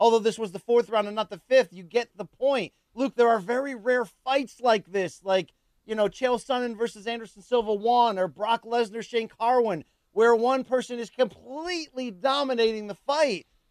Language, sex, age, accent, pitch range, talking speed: English, male, 40-59, American, 215-280 Hz, 195 wpm